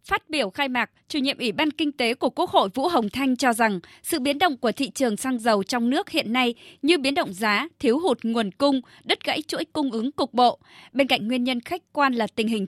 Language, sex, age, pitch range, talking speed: Vietnamese, female, 20-39, 225-285 Hz, 255 wpm